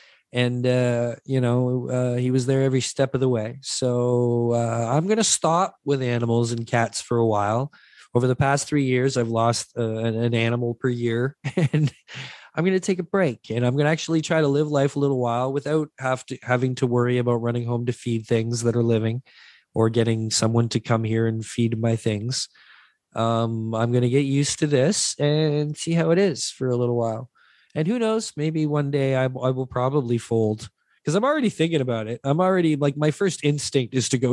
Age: 20-39